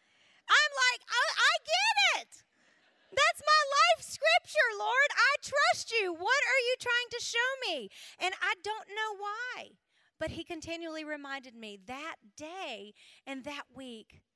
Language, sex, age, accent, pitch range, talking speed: English, female, 40-59, American, 215-310 Hz, 150 wpm